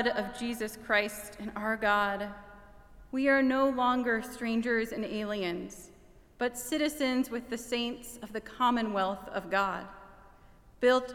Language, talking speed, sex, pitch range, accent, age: English, 130 wpm, female, 205-245 Hz, American, 30-49